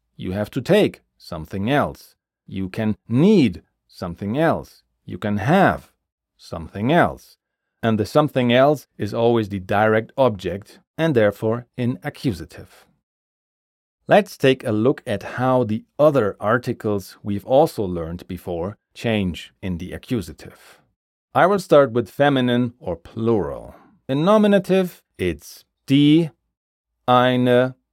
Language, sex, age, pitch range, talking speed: German, male, 40-59, 95-145 Hz, 125 wpm